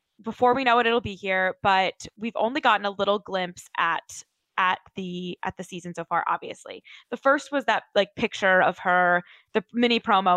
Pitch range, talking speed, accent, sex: 185-245 Hz, 195 wpm, American, female